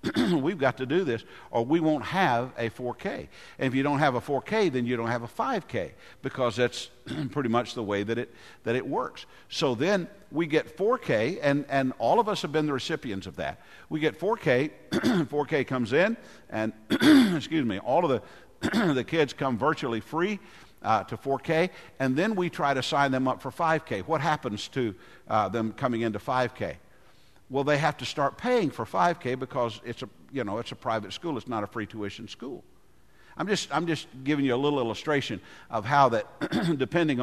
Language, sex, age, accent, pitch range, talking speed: English, male, 50-69, American, 120-155 Hz, 200 wpm